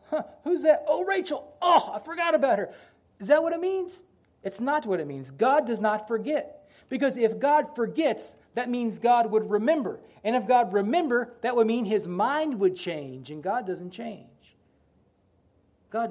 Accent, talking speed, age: American, 180 wpm, 40-59